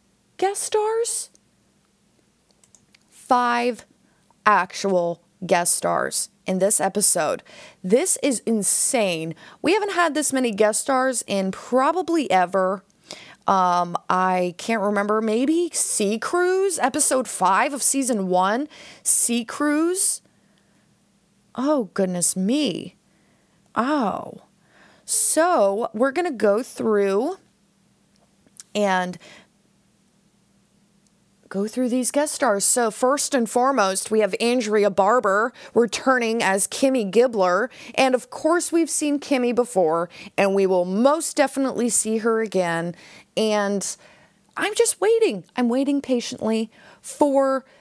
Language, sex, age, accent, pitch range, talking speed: English, female, 20-39, American, 195-270 Hz, 110 wpm